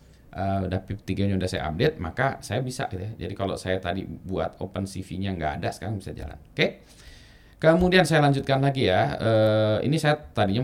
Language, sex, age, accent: Indonesian, male, 20-39, native